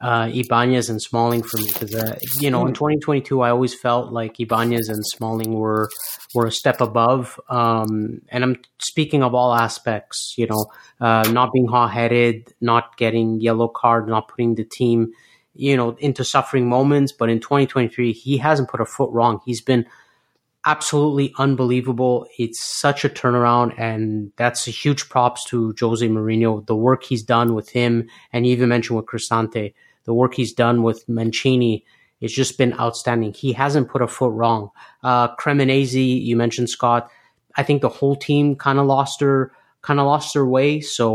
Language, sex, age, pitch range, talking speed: English, male, 30-49, 115-130 Hz, 170 wpm